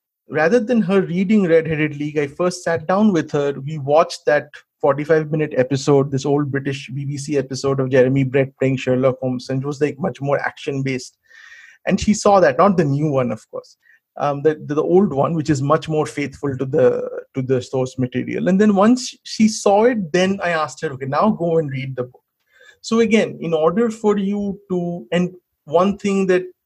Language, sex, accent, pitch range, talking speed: English, male, Indian, 140-185 Hz, 205 wpm